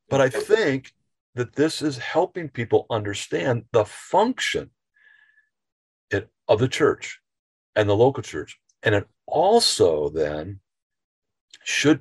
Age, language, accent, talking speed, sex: 50-69, English, American, 115 wpm, male